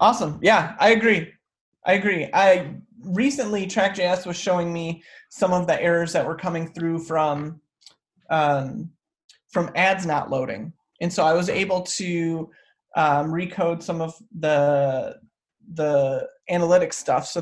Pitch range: 155-195 Hz